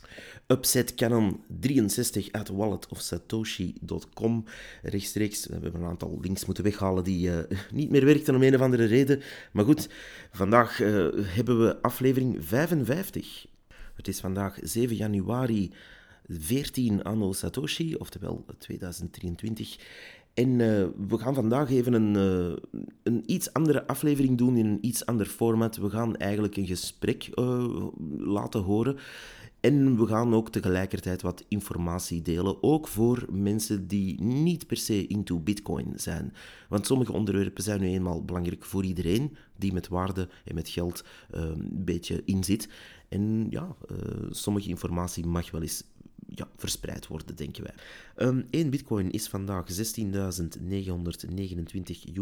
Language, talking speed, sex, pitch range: Dutch, 140 wpm, male, 90-115 Hz